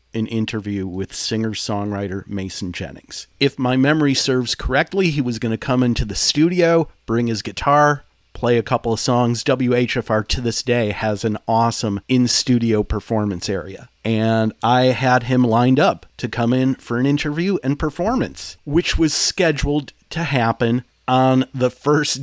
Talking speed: 160 wpm